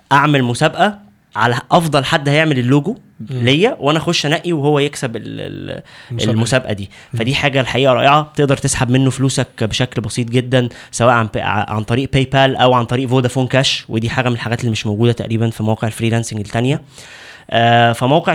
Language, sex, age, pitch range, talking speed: Arabic, male, 20-39, 115-140 Hz, 160 wpm